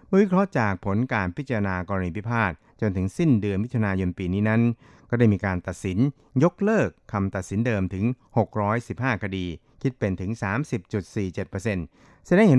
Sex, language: male, Thai